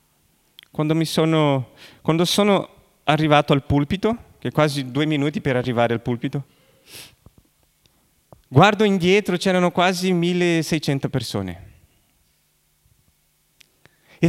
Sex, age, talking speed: male, 40-59, 100 wpm